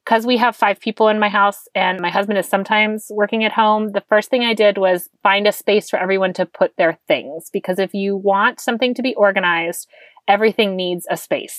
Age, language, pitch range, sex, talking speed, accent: 30-49, English, 195-245 Hz, female, 225 wpm, American